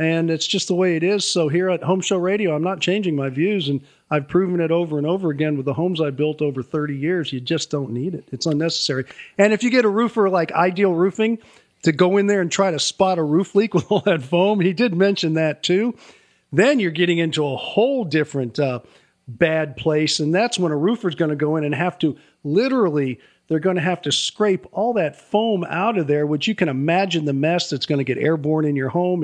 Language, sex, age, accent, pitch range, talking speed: English, male, 40-59, American, 150-185 Hz, 245 wpm